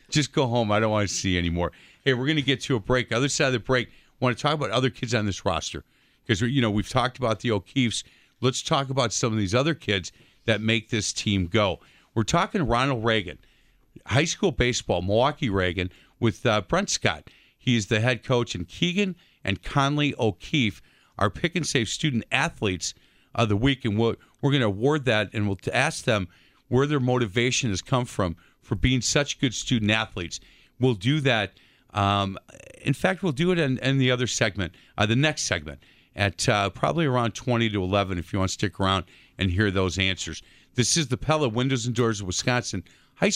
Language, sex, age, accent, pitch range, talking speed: English, male, 50-69, American, 100-135 Hz, 205 wpm